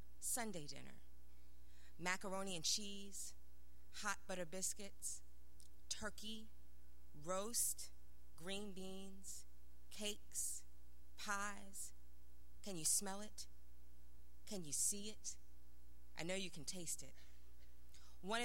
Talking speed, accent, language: 95 wpm, American, English